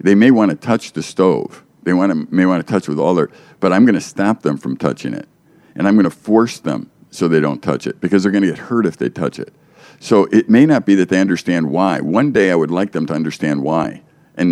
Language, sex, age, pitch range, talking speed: English, male, 50-69, 80-105 Hz, 275 wpm